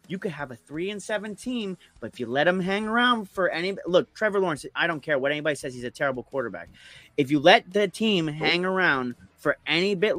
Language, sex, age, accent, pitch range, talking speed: English, male, 30-49, American, 145-205 Hz, 240 wpm